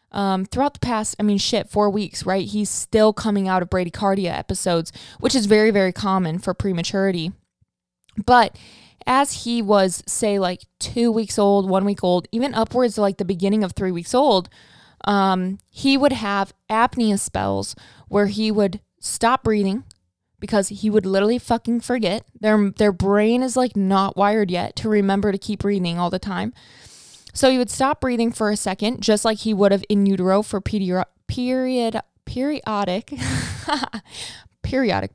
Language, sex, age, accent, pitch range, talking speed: English, female, 20-39, American, 195-235 Hz, 165 wpm